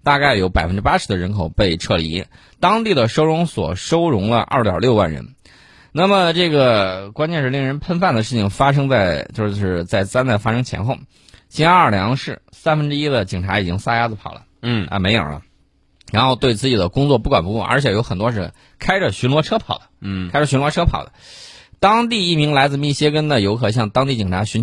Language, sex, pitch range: Chinese, male, 100-140 Hz